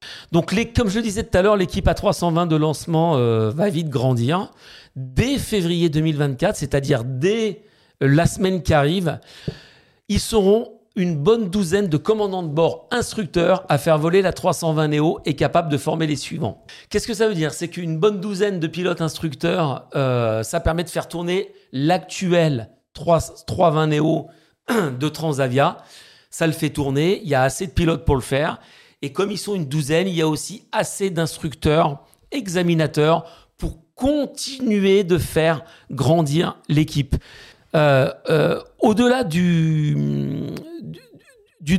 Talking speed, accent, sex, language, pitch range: 155 wpm, French, male, French, 150-200 Hz